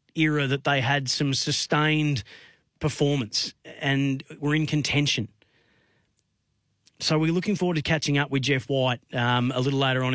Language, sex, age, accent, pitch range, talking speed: English, male, 30-49, Australian, 135-155 Hz, 155 wpm